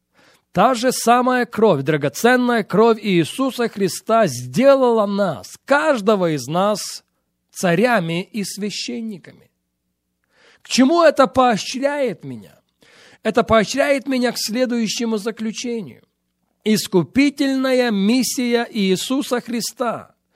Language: English